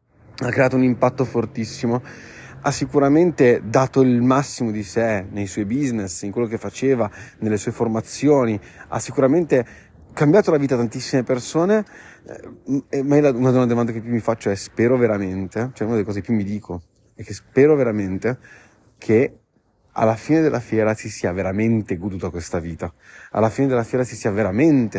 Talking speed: 165 wpm